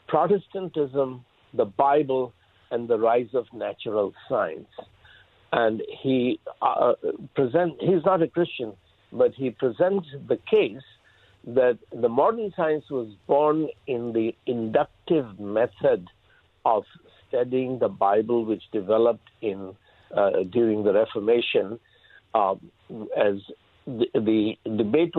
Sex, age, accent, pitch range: male, 60-79, Indian, 110-155 Hz